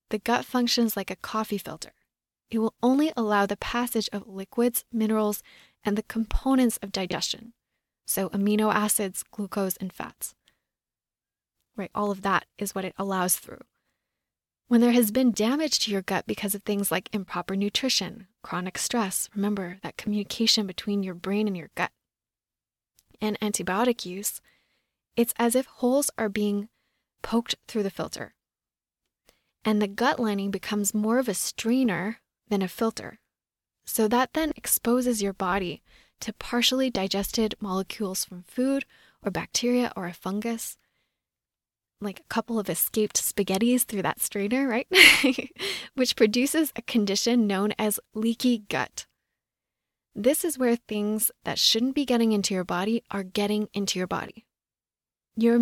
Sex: female